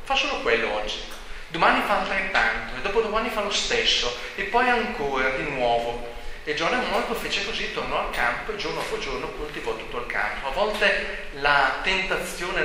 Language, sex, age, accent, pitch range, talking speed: Italian, male, 30-49, native, 145-205 Hz, 185 wpm